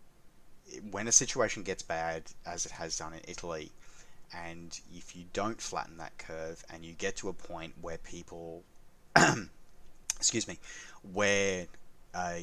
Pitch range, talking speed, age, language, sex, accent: 80-95 Hz, 145 wpm, 30-49, English, male, Australian